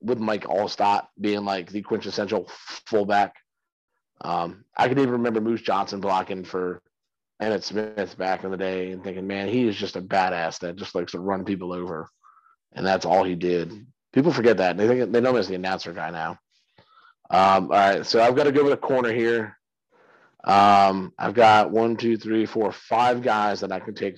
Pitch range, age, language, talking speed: 95-130 Hz, 30-49, English, 200 wpm